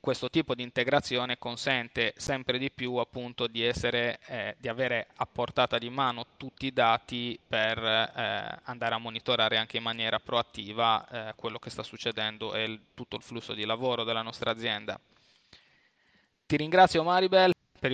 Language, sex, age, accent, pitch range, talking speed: Italian, male, 20-39, native, 120-140 Hz, 165 wpm